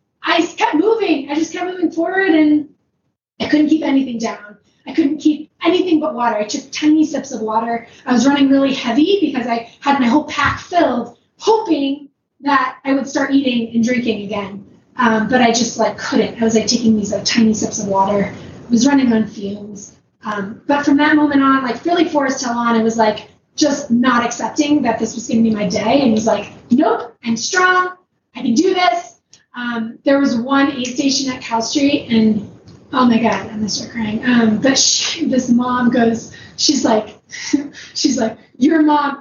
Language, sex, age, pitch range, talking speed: English, female, 20-39, 235-300 Hz, 205 wpm